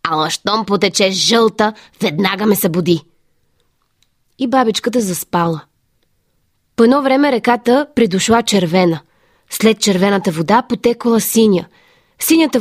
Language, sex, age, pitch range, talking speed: Bulgarian, female, 20-39, 190-250 Hz, 105 wpm